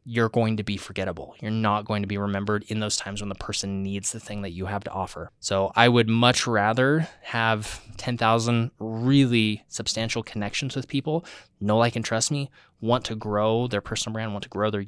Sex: male